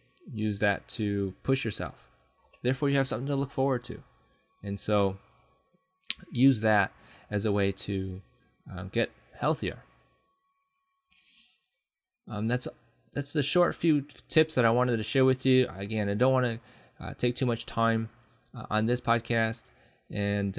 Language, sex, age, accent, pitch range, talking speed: English, male, 20-39, American, 100-125 Hz, 155 wpm